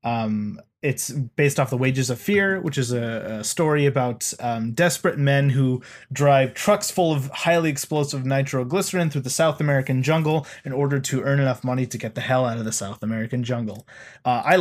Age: 20-39